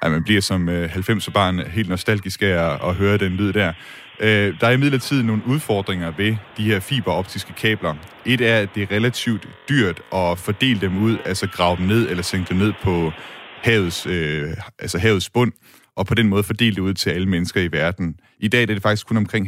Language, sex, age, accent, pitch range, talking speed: Danish, male, 30-49, native, 90-110 Hz, 215 wpm